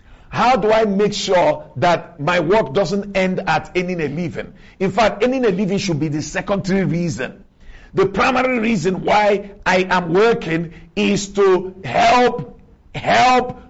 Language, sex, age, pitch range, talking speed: English, male, 50-69, 185-245 Hz, 155 wpm